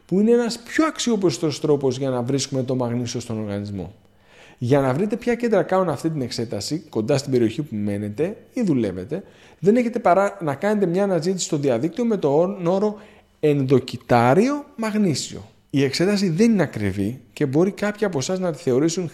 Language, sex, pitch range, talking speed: Greek, male, 120-185 Hz, 170 wpm